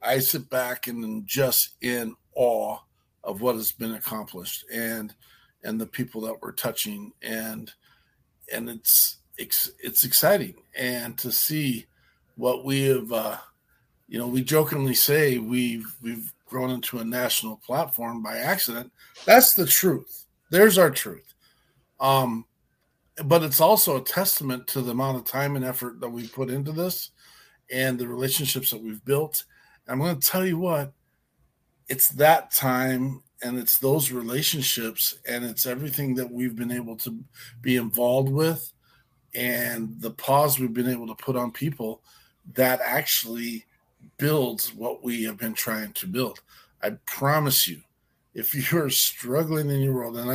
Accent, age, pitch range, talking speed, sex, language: American, 50-69, 120-140 Hz, 155 wpm, male, English